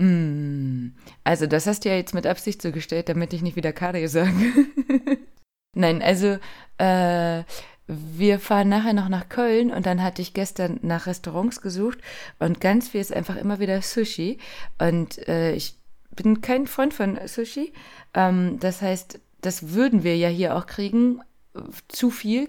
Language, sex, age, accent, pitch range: Japanese, female, 20-39, German, 165-210 Hz